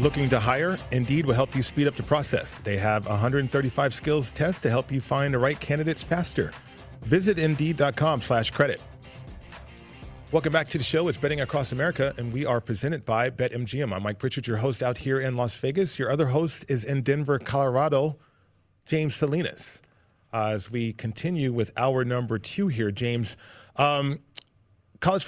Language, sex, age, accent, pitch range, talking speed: English, male, 40-59, American, 120-150 Hz, 175 wpm